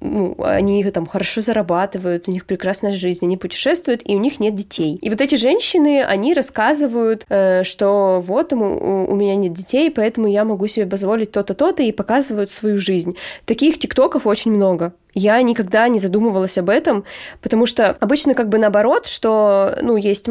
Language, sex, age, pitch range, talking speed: Russian, female, 20-39, 200-250 Hz, 170 wpm